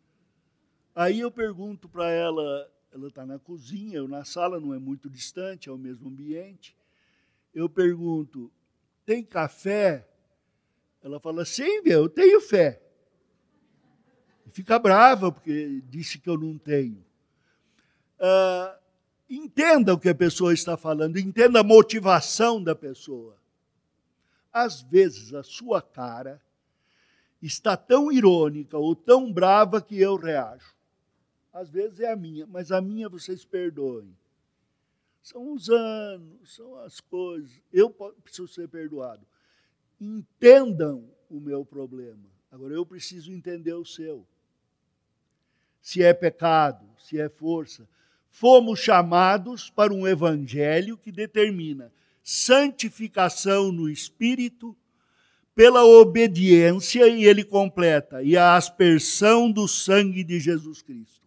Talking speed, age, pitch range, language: 120 wpm, 60-79, 155-210 Hz, Portuguese